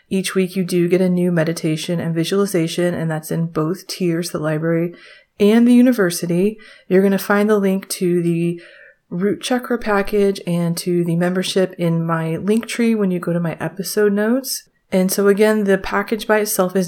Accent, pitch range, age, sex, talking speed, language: American, 170-210 Hz, 30-49, female, 190 wpm, English